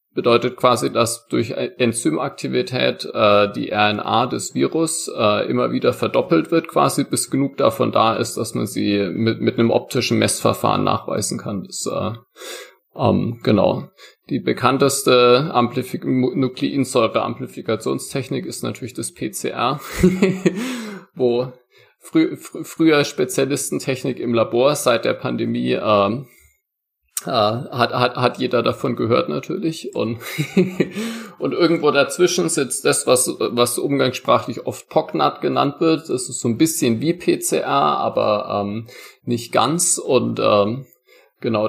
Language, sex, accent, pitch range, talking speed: German, male, German, 115-160 Hz, 125 wpm